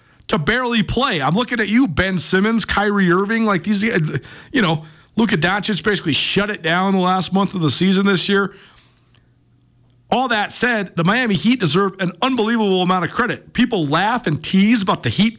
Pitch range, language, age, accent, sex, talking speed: 155-205 Hz, English, 40-59, American, male, 185 wpm